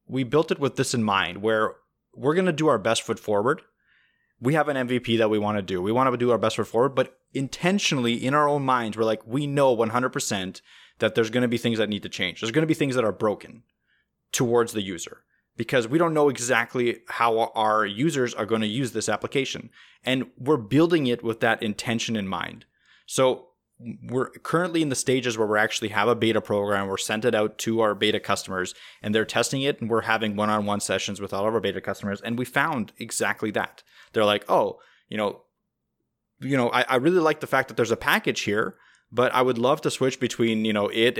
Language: English